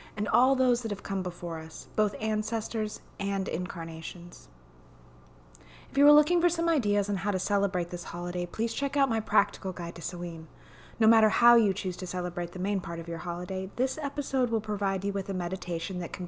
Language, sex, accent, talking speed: English, female, American, 205 wpm